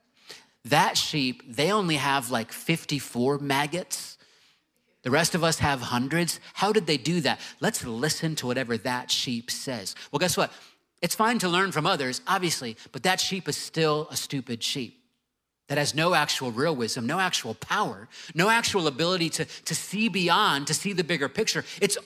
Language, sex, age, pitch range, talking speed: English, male, 30-49, 135-185 Hz, 180 wpm